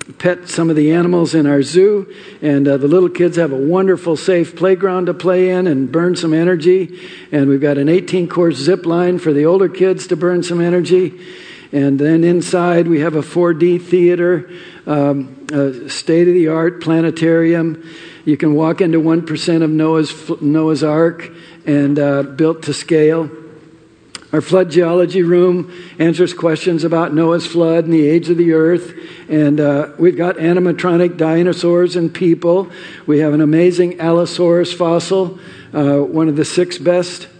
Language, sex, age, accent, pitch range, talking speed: English, male, 60-79, American, 155-175 Hz, 160 wpm